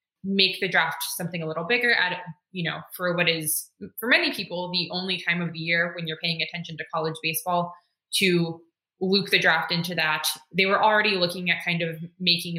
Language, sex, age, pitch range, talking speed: English, female, 20-39, 165-205 Hz, 205 wpm